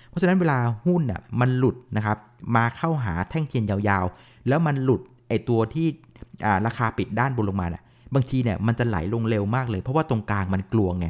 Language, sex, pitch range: Thai, male, 100-130 Hz